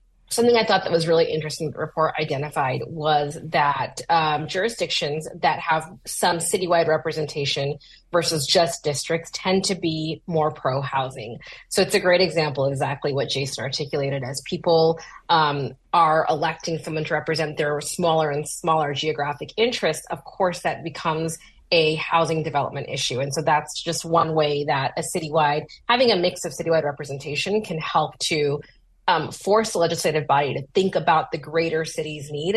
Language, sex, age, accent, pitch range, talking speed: English, female, 30-49, American, 150-170 Hz, 160 wpm